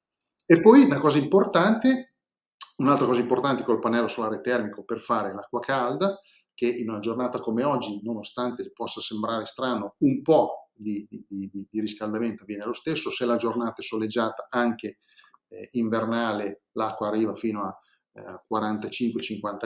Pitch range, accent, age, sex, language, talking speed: 110-155 Hz, native, 40-59, male, Italian, 150 wpm